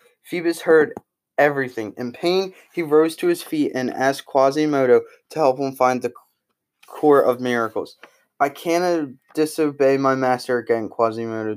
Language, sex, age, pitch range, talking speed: English, male, 20-39, 125-160 Hz, 145 wpm